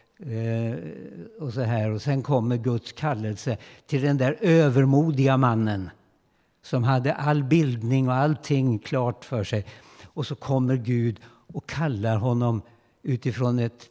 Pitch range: 110-150 Hz